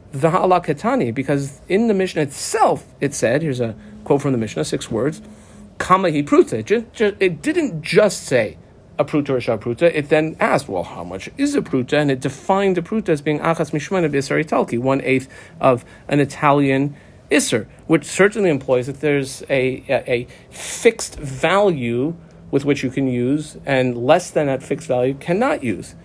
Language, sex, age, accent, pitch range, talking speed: English, male, 40-59, American, 125-160 Hz, 175 wpm